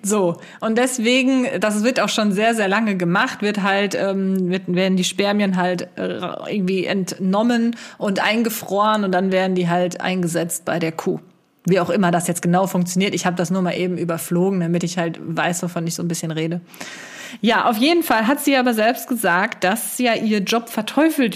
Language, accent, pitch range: German, German, 180-235 Hz